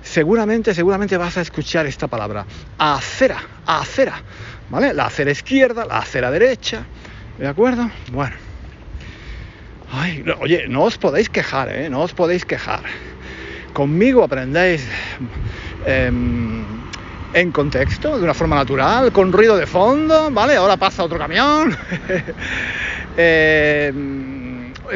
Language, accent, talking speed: Spanish, Spanish, 115 wpm